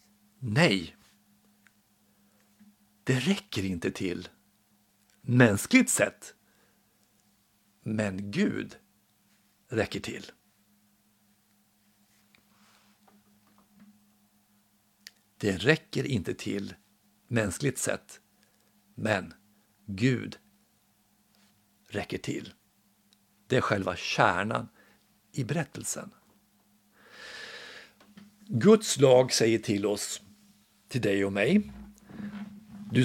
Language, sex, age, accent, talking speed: Swedish, male, 60-79, native, 65 wpm